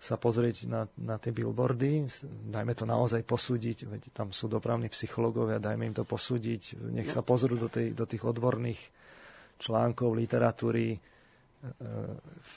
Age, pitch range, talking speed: 30-49, 110-125 Hz, 140 wpm